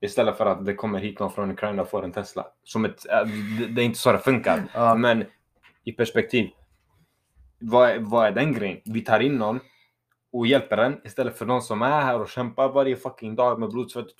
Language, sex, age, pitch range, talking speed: Swedish, male, 20-39, 105-125 Hz, 210 wpm